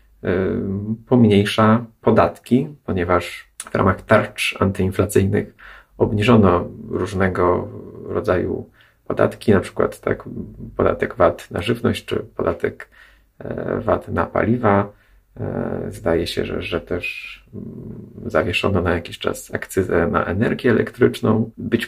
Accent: native